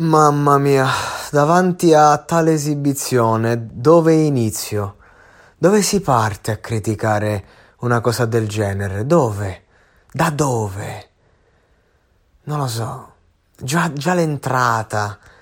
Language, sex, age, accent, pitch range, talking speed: Italian, male, 20-39, native, 105-125 Hz, 100 wpm